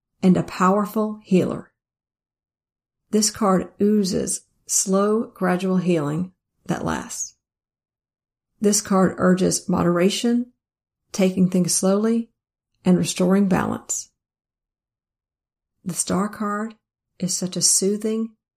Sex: female